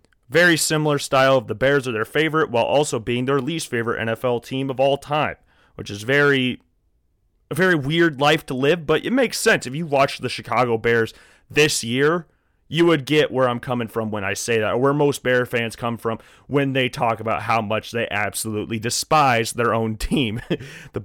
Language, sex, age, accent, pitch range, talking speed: English, male, 30-49, American, 115-145 Hz, 205 wpm